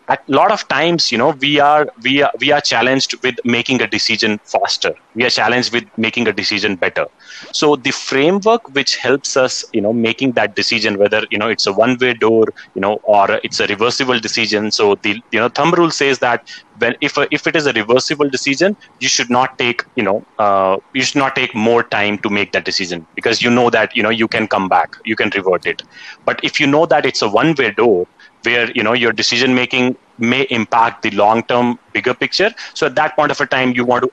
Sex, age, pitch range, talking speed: male, 30-49, 110-135 Hz, 235 wpm